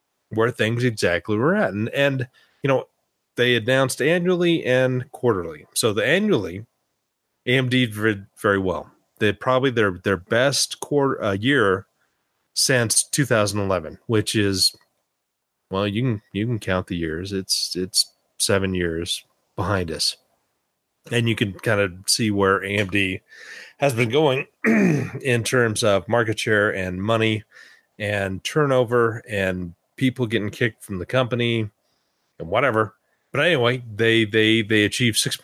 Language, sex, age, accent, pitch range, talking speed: English, male, 30-49, American, 100-130 Hz, 140 wpm